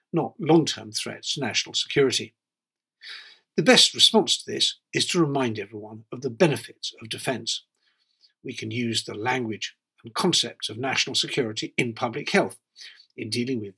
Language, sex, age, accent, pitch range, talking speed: English, male, 50-69, British, 115-160 Hz, 155 wpm